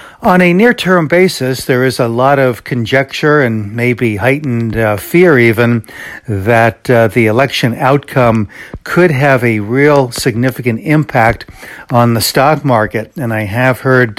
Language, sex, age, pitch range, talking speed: English, male, 60-79, 115-135 Hz, 150 wpm